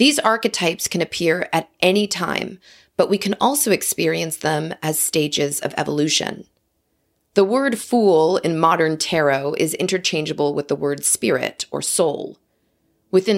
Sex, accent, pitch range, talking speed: female, American, 155-195 Hz, 145 wpm